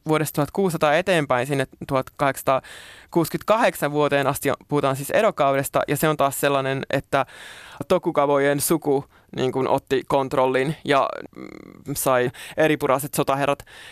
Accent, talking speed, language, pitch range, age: native, 110 wpm, Finnish, 135-150 Hz, 20-39